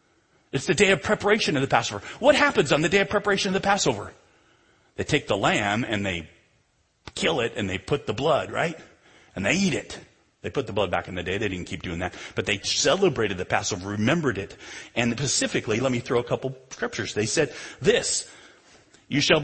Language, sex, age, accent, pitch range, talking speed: English, male, 40-59, American, 120-185 Hz, 215 wpm